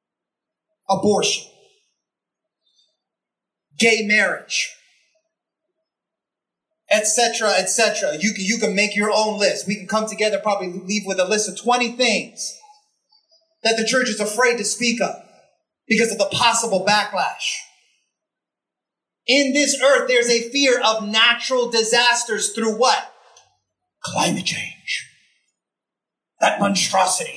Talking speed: 115 wpm